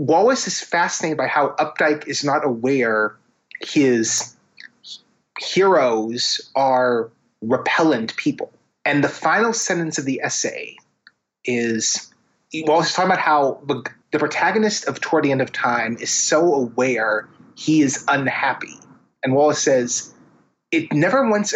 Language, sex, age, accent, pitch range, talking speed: English, male, 30-49, American, 130-190 Hz, 130 wpm